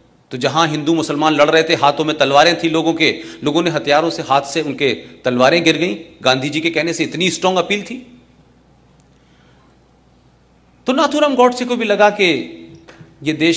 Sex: male